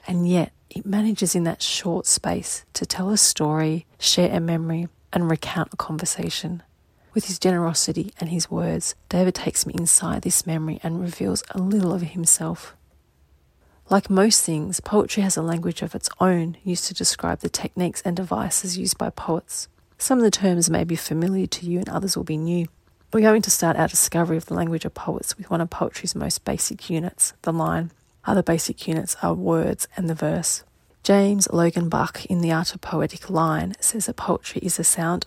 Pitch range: 160-190 Hz